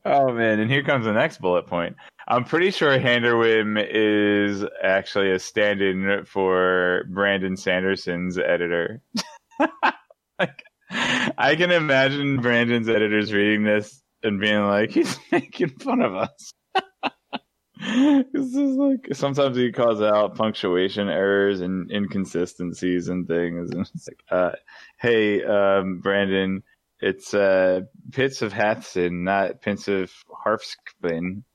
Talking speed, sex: 125 wpm, male